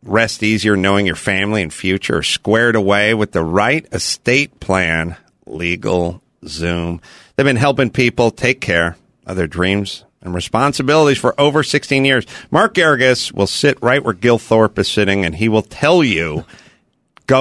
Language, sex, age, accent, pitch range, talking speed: English, male, 50-69, American, 95-130 Hz, 160 wpm